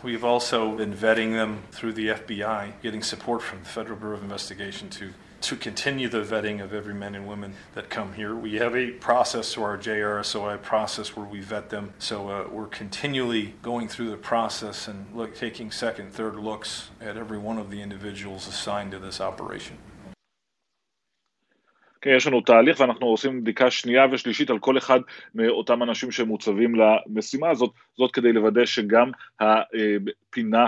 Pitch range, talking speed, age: 105-120 Hz, 170 wpm, 40-59